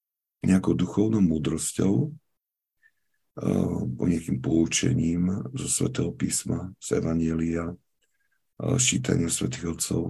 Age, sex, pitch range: 50-69, male, 85-125 Hz